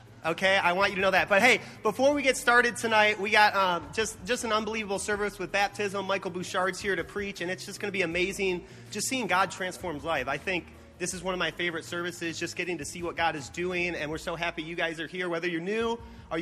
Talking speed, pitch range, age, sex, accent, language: 255 wpm, 175-220 Hz, 30-49, male, American, English